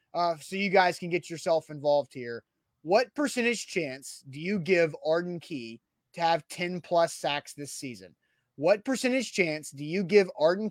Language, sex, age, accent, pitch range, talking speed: English, male, 30-49, American, 165-195 Hz, 175 wpm